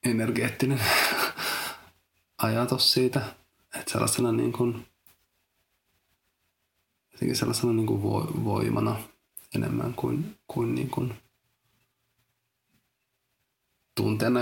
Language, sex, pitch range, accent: Finnish, male, 105-125 Hz, native